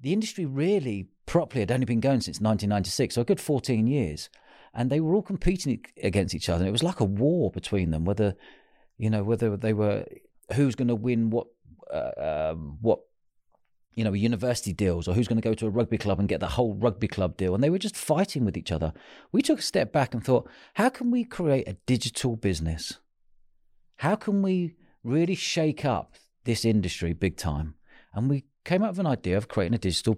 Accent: British